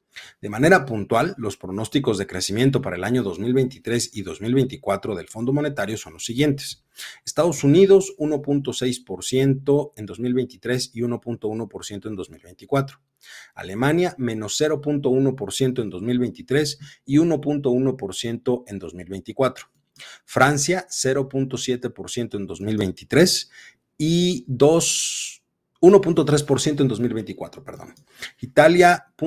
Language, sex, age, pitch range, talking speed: Spanish, male, 40-59, 110-145 Hz, 95 wpm